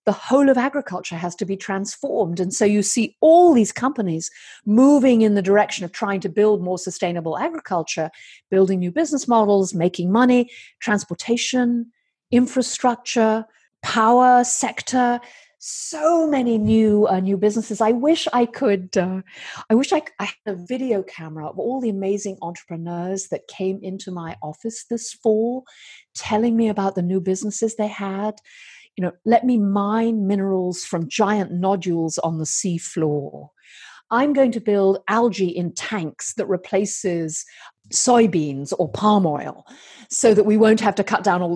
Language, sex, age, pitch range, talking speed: English, female, 40-59, 175-230 Hz, 160 wpm